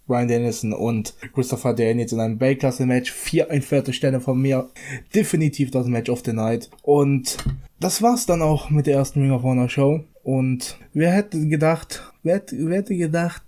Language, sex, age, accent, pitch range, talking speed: German, male, 20-39, German, 130-150 Hz, 170 wpm